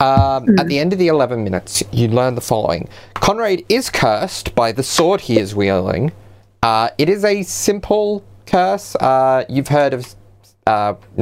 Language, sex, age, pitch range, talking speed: English, male, 30-49, 100-135 Hz, 170 wpm